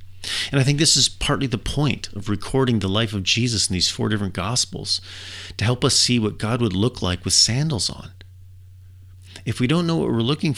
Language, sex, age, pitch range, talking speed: English, male, 40-59, 95-115 Hz, 215 wpm